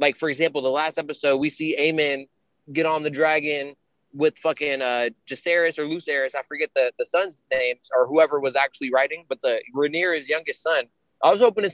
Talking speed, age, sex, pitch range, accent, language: 190 wpm, 20-39, male, 150-185 Hz, American, English